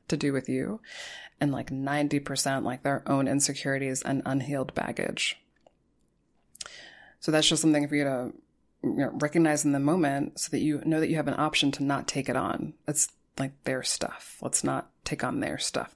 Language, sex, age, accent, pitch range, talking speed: English, female, 20-39, American, 140-160 Hz, 180 wpm